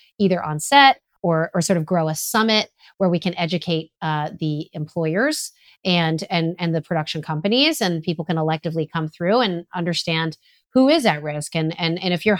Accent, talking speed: American, 195 wpm